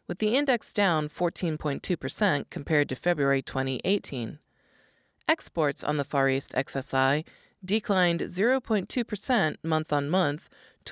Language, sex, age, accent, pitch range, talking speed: English, female, 30-49, American, 145-220 Hz, 105 wpm